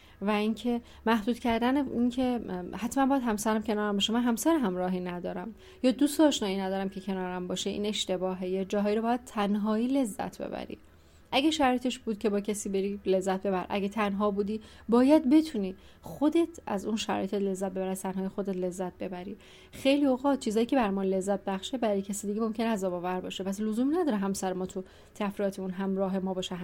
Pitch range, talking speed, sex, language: 190-240 Hz, 175 wpm, female, Persian